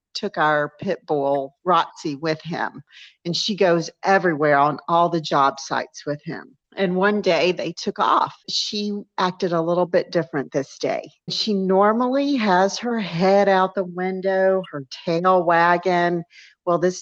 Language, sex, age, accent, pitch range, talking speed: English, female, 50-69, American, 150-185 Hz, 160 wpm